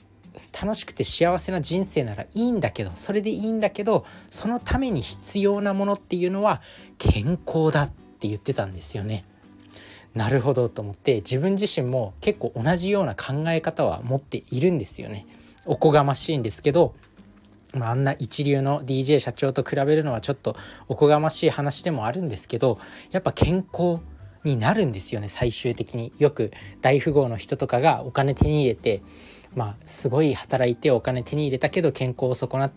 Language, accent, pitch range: Japanese, native, 115-160 Hz